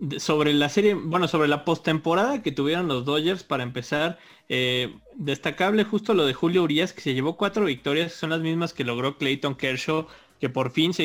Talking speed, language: 195 wpm, Spanish